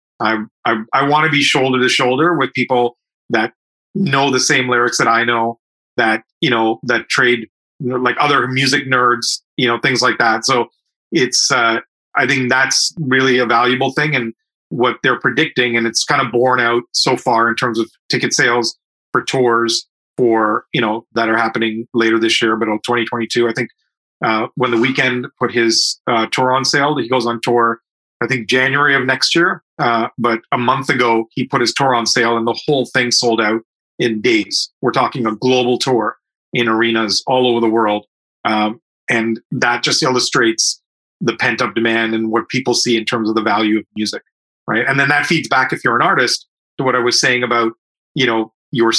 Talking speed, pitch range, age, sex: 205 wpm, 115-130 Hz, 40-59, male